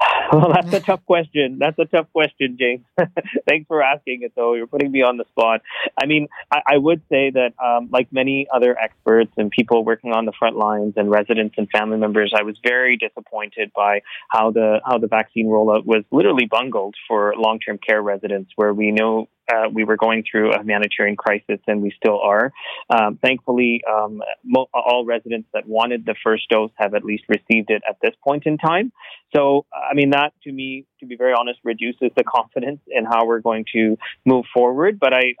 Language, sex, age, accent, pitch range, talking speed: English, male, 30-49, American, 110-130 Hz, 205 wpm